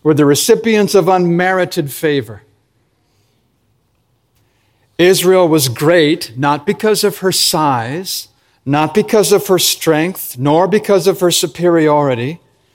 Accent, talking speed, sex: American, 115 wpm, male